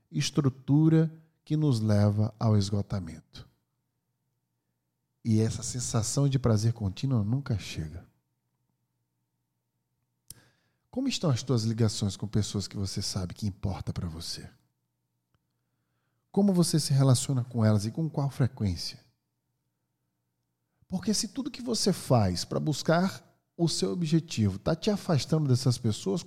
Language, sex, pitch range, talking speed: Portuguese, male, 105-160 Hz, 125 wpm